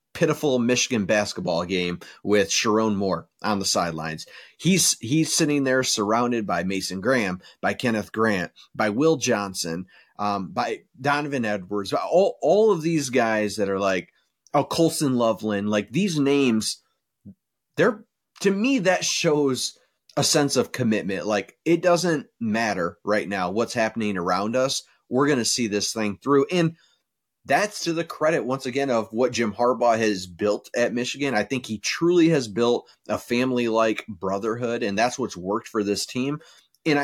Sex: male